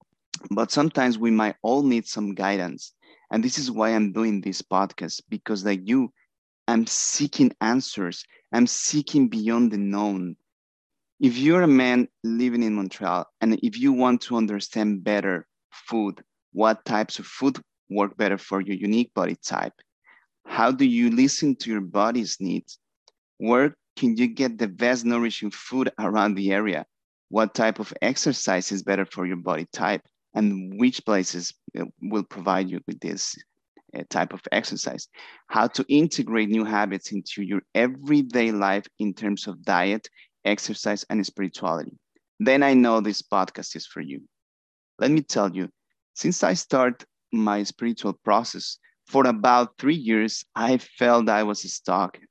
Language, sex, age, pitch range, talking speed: English, male, 30-49, 100-125 Hz, 155 wpm